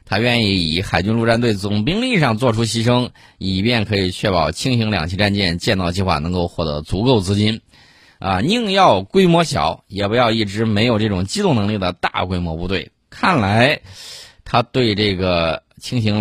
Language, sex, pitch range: Chinese, male, 90-115 Hz